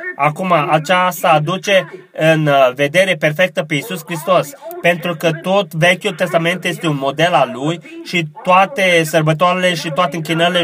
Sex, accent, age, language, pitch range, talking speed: male, native, 20-39, Romanian, 155-180 Hz, 140 wpm